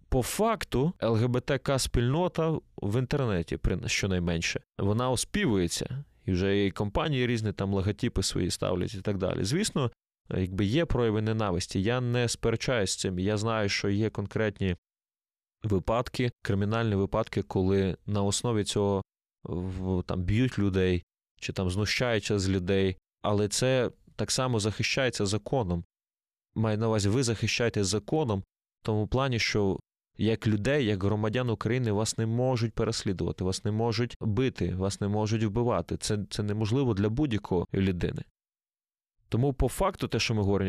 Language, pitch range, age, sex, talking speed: Ukrainian, 100-125 Hz, 20-39, male, 145 wpm